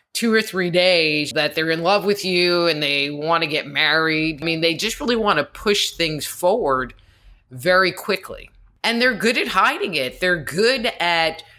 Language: English